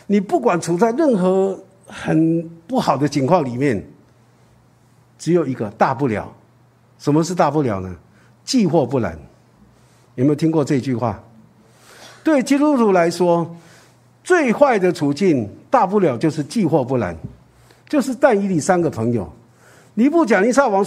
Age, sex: 50-69, male